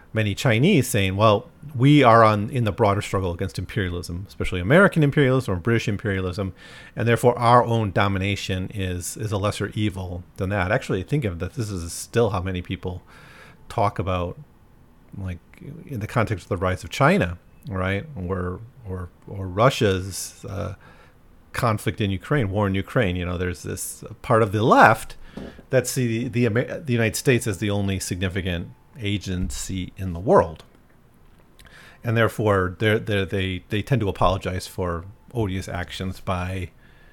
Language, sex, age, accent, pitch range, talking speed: English, male, 40-59, American, 90-110 Hz, 160 wpm